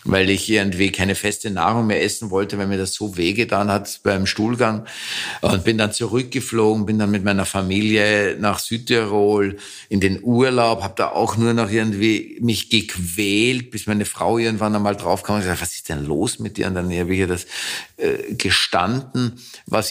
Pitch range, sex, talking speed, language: 100-115 Hz, male, 185 wpm, German